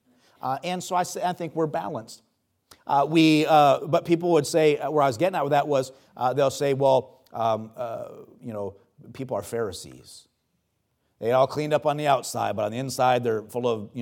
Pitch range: 120-165 Hz